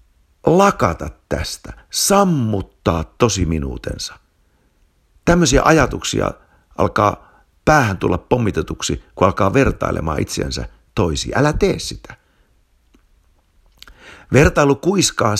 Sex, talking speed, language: male, 80 wpm, Finnish